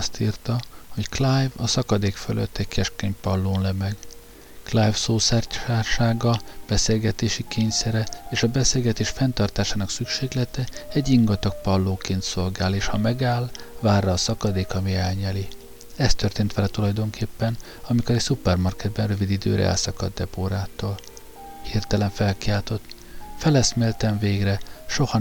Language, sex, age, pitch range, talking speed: Hungarian, male, 50-69, 95-115 Hz, 115 wpm